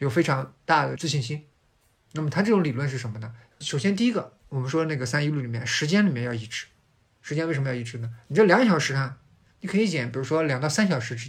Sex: male